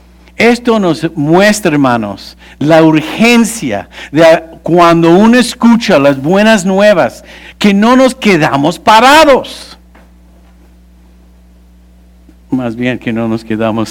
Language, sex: English, male